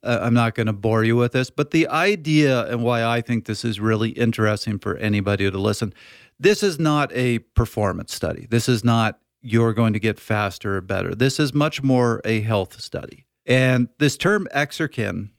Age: 40-59